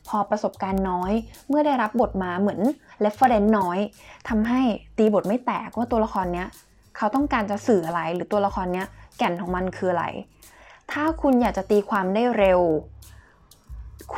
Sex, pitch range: female, 190-230 Hz